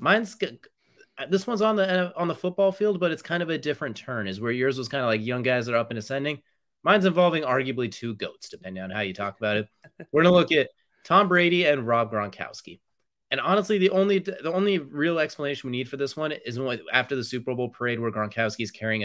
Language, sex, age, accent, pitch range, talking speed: English, male, 30-49, American, 105-145 Hz, 235 wpm